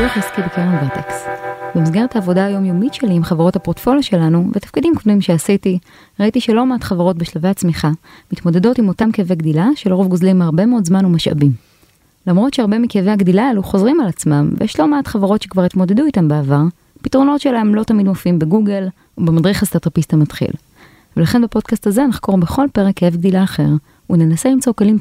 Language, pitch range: Hebrew, 170-215 Hz